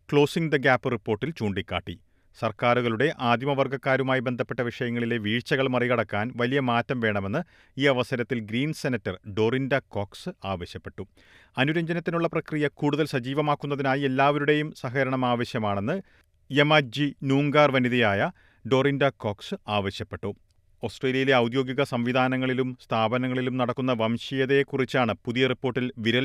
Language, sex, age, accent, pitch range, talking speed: Malayalam, male, 40-59, native, 110-140 Hz, 100 wpm